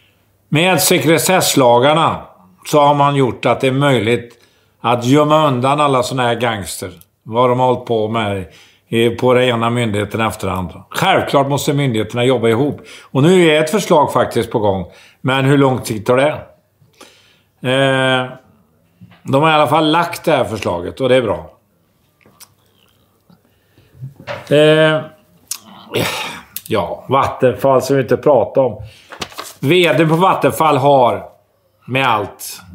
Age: 50-69